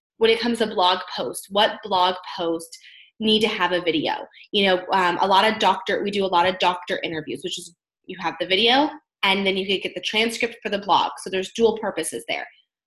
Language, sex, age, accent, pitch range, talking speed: English, female, 20-39, American, 185-250 Hz, 230 wpm